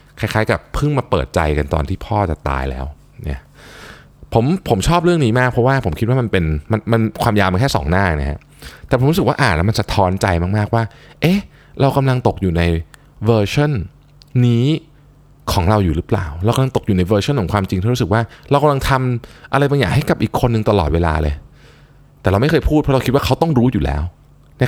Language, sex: Thai, male